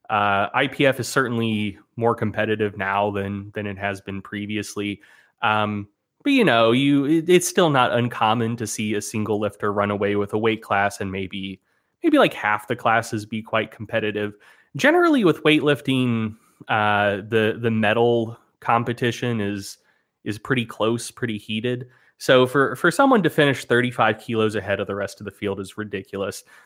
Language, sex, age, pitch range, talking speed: English, male, 20-39, 105-125 Hz, 165 wpm